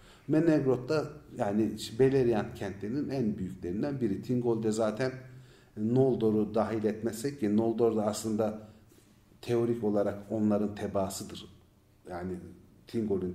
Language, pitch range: Turkish, 100-135 Hz